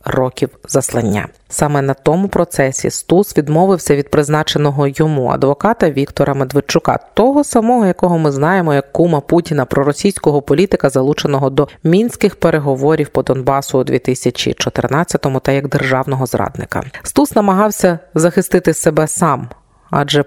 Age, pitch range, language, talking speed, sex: 30-49, 145-190 Hz, Ukrainian, 130 wpm, female